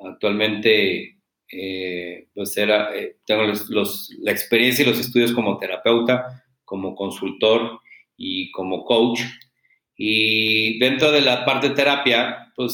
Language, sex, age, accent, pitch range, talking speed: Spanish, male, 40-59, Mexican, 110-130 Hz, 130 wpm